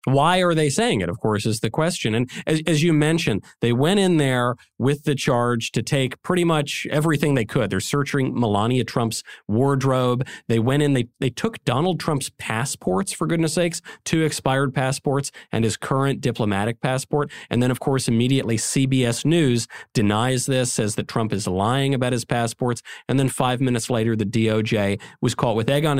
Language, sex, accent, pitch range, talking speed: English, male, American, 115-150 Hz, 190 wpm